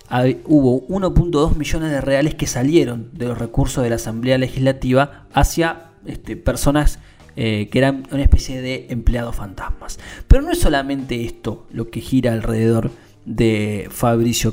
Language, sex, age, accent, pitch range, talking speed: Spanish, male, 20-39, Argentinian, 115-145 Hz, 145 wpm